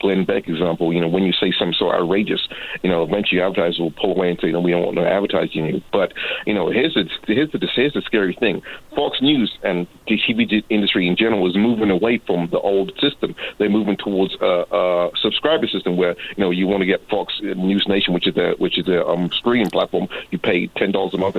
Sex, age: male, 40-59